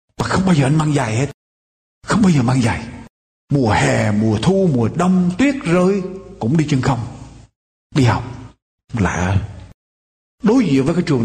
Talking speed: 175 wpm